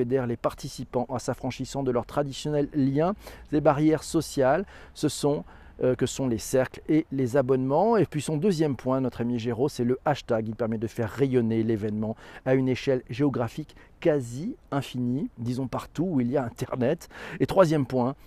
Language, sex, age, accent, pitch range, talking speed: French, male, 40-59, French, 125-160 Hz, 175 wpm